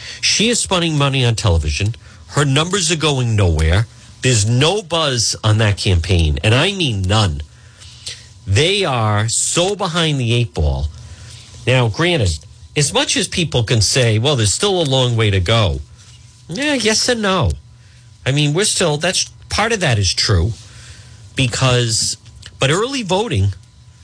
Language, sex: English, male